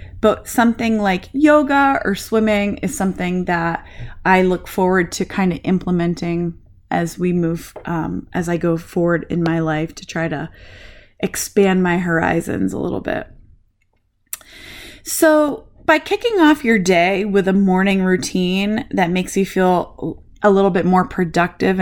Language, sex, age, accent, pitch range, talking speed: English, female, 20-39, American, 175-225 Hz, 150 wpm